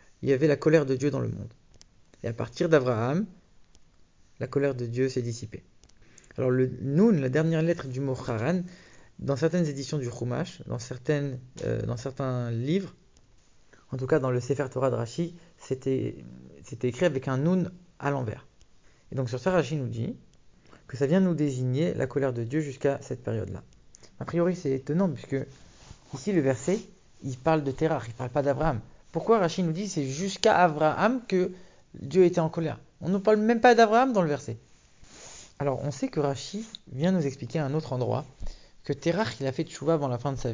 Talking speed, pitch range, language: 200 wpm, 125-165 Hz, English